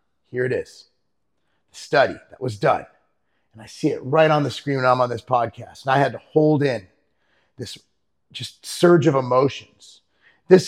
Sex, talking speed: male, 185 wpm